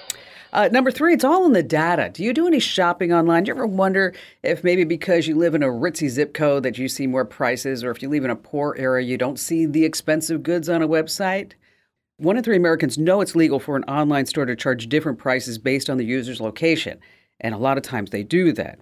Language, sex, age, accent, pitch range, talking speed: English, female, 50-69, American, 135-185 Hz, 250 wpm